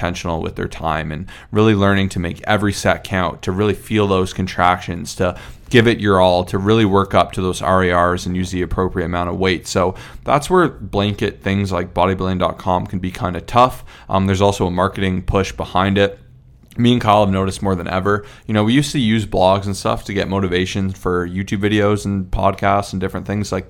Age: 20-39